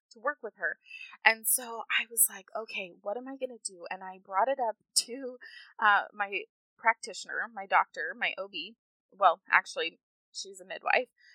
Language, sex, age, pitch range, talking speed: English, female, 20-39, 195-255 Hz, 180 wpm